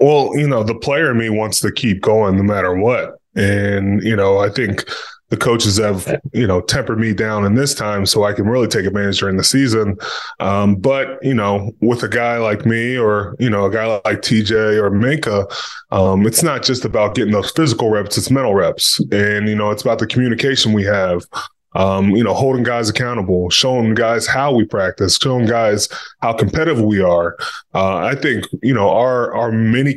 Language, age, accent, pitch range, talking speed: English, 20-39, American, 105-125 Hz, 210 wpm